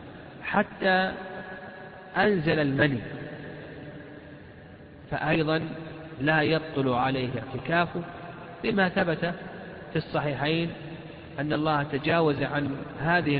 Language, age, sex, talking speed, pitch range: Arabic, 50-69, male, 75 wpm, 140-185 Hz